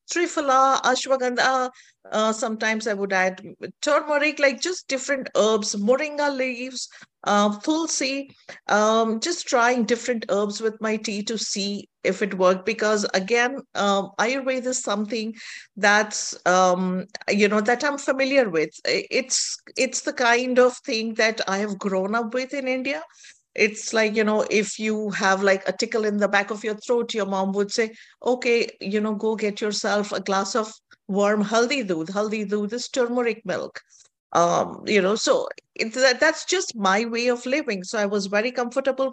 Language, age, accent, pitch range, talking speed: English, 50-69, Indian, 205-255 Hz, 170 wpm